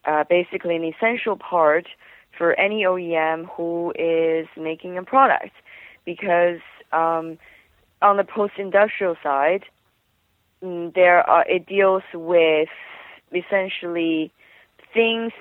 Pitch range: 165-195 Hz